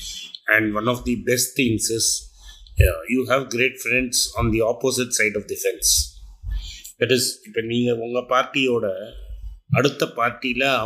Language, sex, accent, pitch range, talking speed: Tamil, male, native, 105-130 Hz, 160 wpm